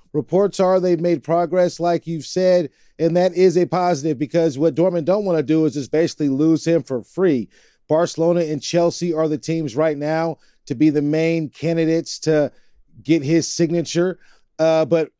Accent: American